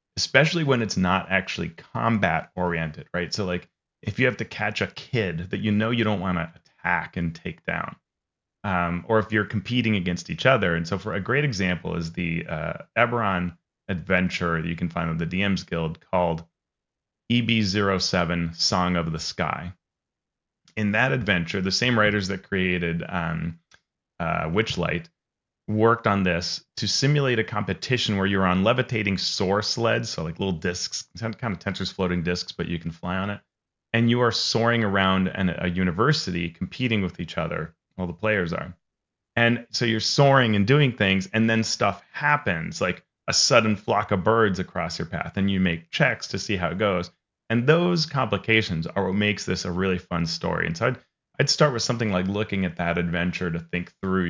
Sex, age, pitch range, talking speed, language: male, 30-49, 90-115 Hz, 185 wpm, English